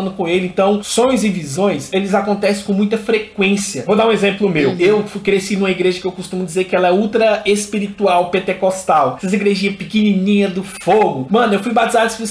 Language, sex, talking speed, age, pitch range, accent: Portuguese, male, 200 wpm, 20-39, 190-230 Hz, Brazilian